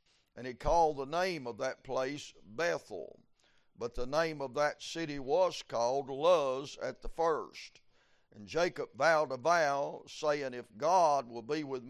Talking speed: 160 wpm